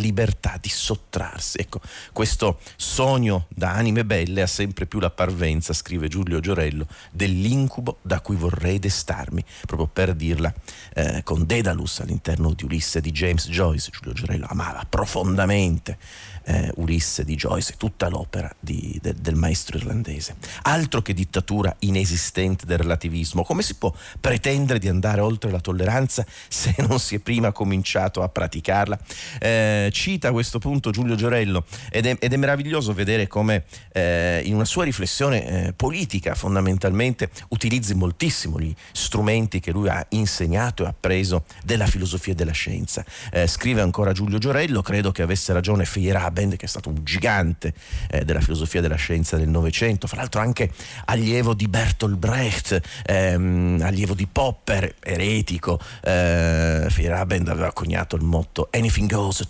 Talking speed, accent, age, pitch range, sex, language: 150 wpm, native, 40-59, 85-110 Hz, male, Italian